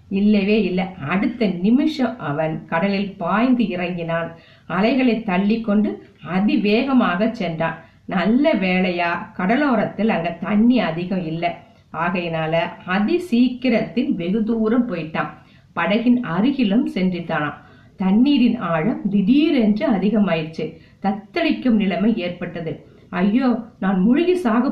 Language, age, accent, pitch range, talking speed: Tamil, 50-69, native, 170-230 Hz, 75 wpm